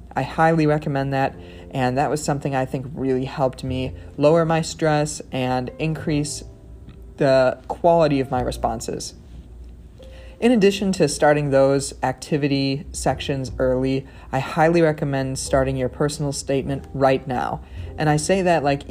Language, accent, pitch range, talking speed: English, American, 135-160 Hz, 145 wpm